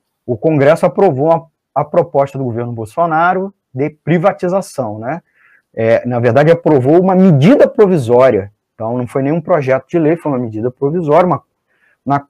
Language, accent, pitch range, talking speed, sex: Portuguese, Brazilian, 125-170 Hz, 155 wpm, male